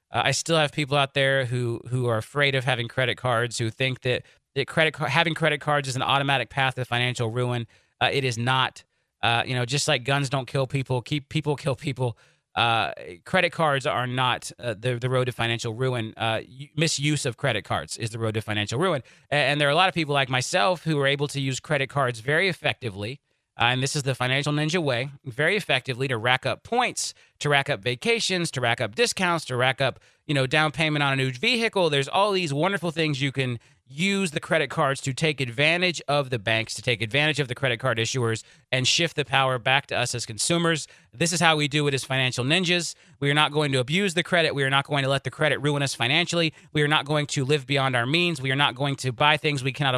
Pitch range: 125-155 Hz